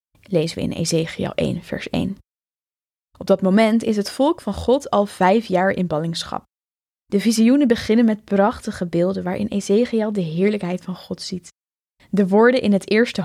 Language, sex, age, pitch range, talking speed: Dutch, female, 10-29, 185-235 Hz, 170 wpm